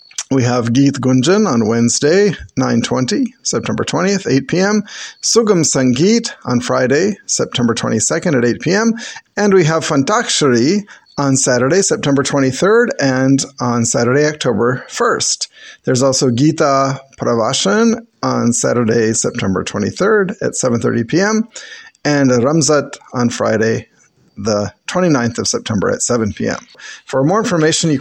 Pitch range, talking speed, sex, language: 125-170 Hz, 140 wpm, male, English